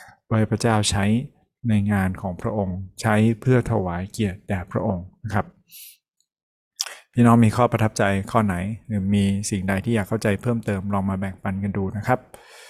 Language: Thai